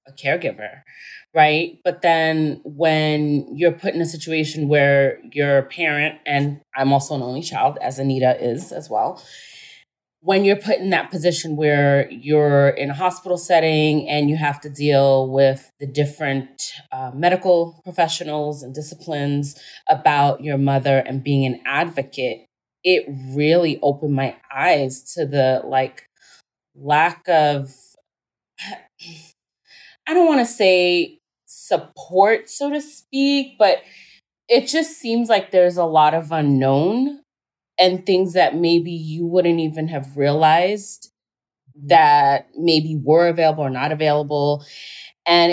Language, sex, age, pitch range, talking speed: English, female, 20-39, 140-175 Hz, 135 wpm